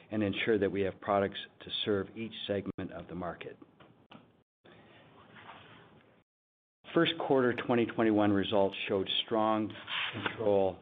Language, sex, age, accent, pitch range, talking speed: English, male, 50-69, American, 95-110 Hz, 110 wpm